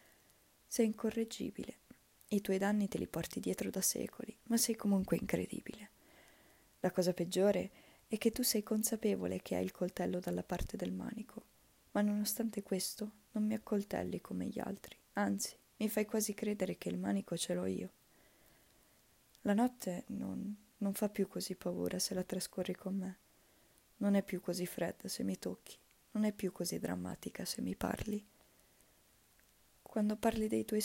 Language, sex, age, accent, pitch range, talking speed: Italian, female, 20-39, native, 180-225 Hz, 165 wpm